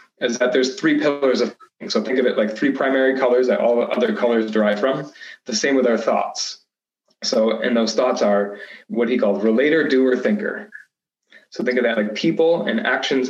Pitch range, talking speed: 110-135 Hz, 200 wpm